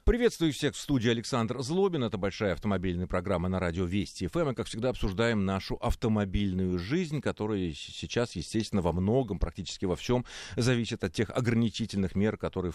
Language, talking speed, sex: Russian, 160 wpm, male